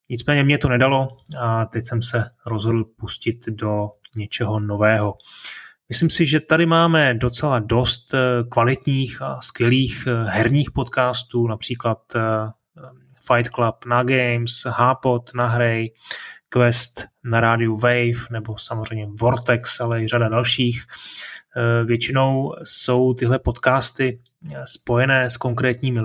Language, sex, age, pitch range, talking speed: Czech, male, 20-39, 115-125 Hz, 120 wpm